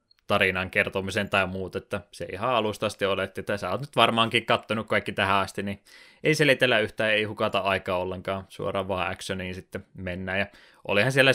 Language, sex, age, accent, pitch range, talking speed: Finnish, male, 20-39, native, 95-105 Hz, 180 wpm